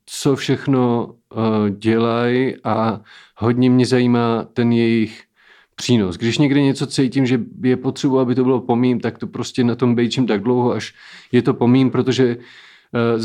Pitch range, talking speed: 115-130 Hz, 165 wpm